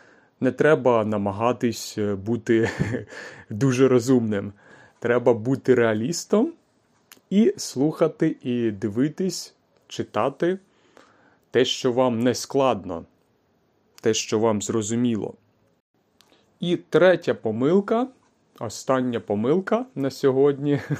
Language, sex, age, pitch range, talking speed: Ukrainian, male, 30-49, 115-140 Hz, 85 wpm